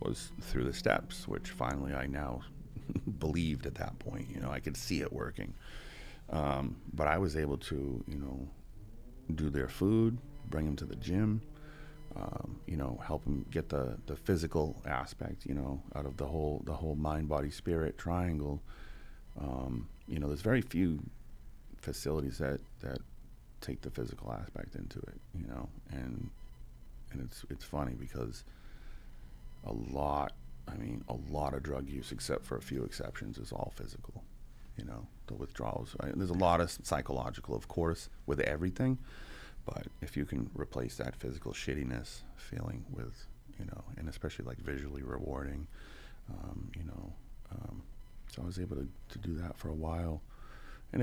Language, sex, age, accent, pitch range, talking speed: English, male, 30-49, American, 70-90 Hz, 170 wpm